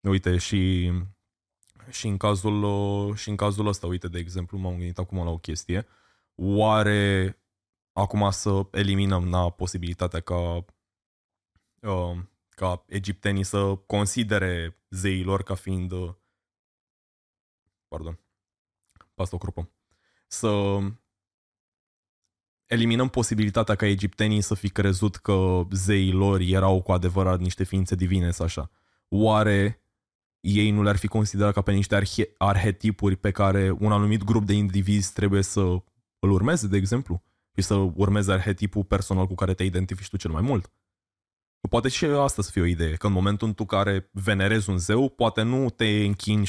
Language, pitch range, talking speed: Romanian, 95-105 Hz, 145 wpm